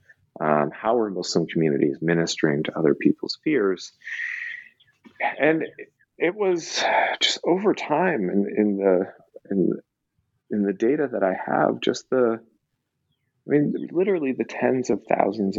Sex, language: male, English